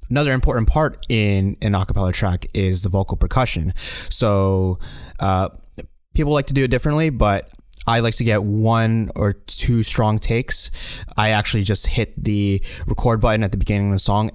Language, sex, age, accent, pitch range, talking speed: English, male, 20-39, American, 95-110 Hz, 175 wpm